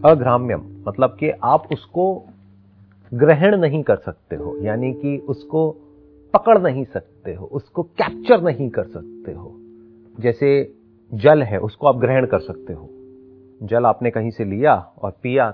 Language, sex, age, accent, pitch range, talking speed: Hindi, male, 40-59, native, 110-155 Hz, 150 wpm